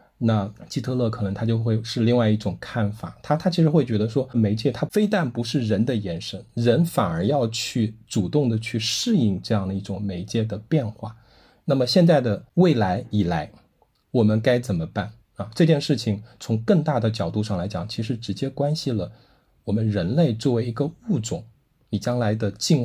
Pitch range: 105-135 Hz